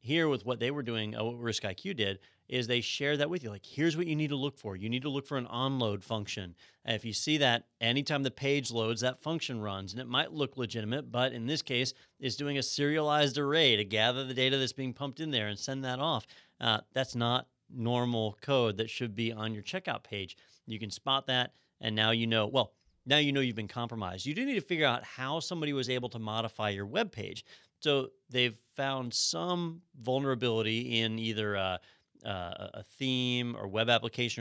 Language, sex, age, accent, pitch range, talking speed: English, male, 40-59, American, 110-135 Hz, 220 wpm